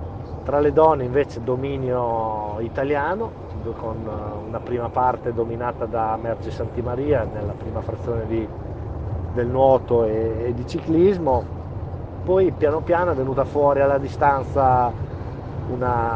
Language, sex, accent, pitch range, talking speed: Italian, male, native, 110-125 Hz, 125 wpm